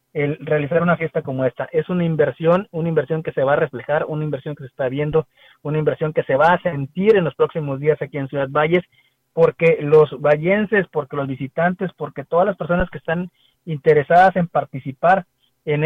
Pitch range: 135-165 Hz